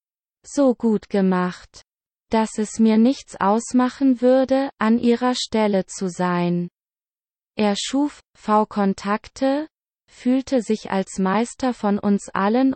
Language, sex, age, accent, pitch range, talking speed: German, female, 20-39, German, 205-245 Hz, 115 wpm